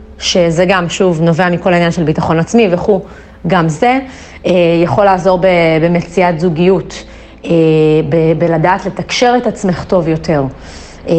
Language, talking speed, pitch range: Hebrew, 120 wpm, 165-195 Hz